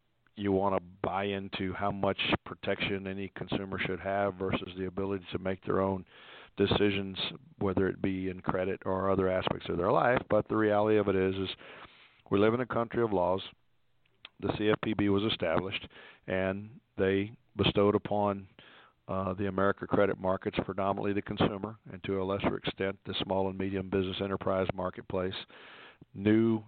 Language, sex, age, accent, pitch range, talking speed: English, male, 50-69, American, 95-110 Hz, 165 wpm